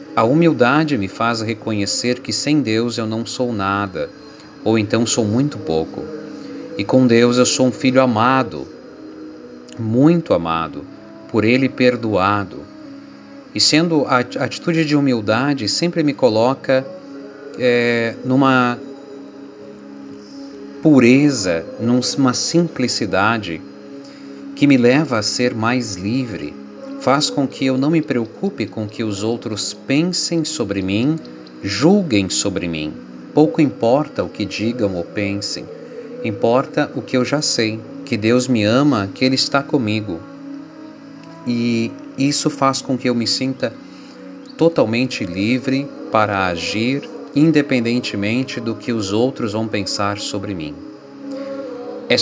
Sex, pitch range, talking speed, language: male, 105-145 Hz, 125 wpm, Portuguese